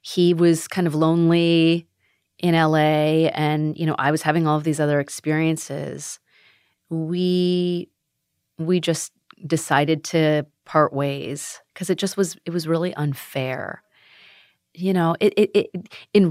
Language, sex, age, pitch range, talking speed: English, female, 30-49, 150-175 Hz, 145 wpm